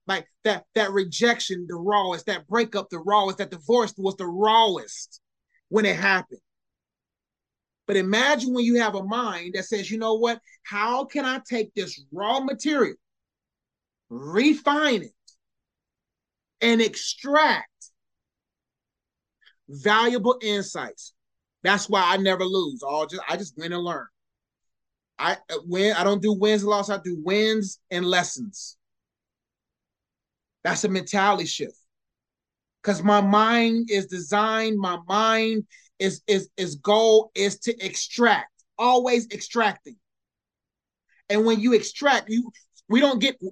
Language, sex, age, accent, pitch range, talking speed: English, male, 30-49, American, 195-235 Hz, 130 wpm